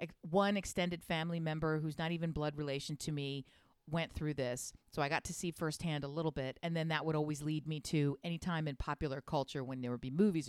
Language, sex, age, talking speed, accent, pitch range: English, female, 40-59, 235 wpm, American, 150-240 Hz